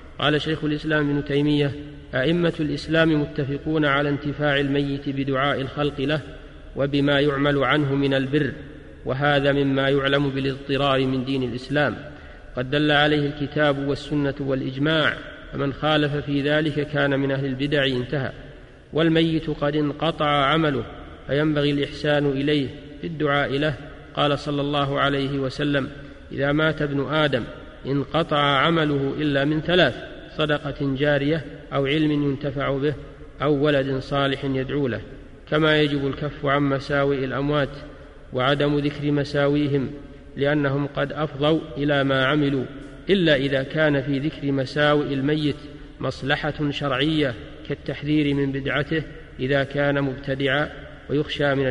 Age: 50-69